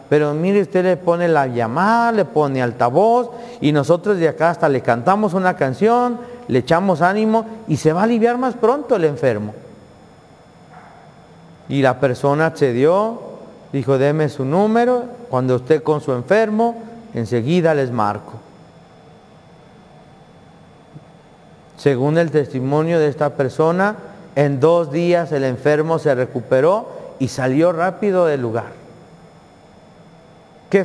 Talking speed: 130 wpm